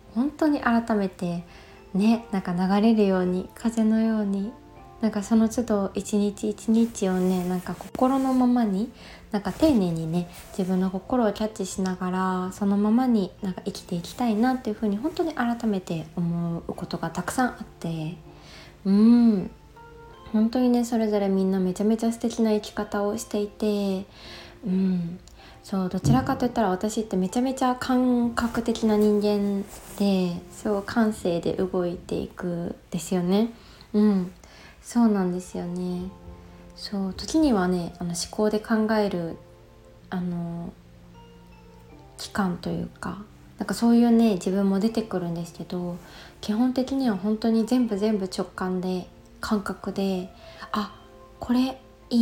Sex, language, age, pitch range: female, Japanese, 20-39, 185-225 Hz